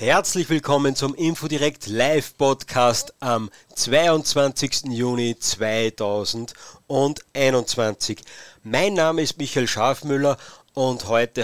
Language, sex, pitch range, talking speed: German, male, 120-145 Hz, 85 wpm